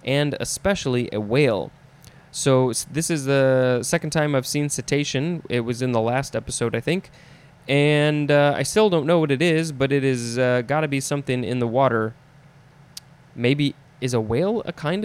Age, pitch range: 20-39, 125-150 Hz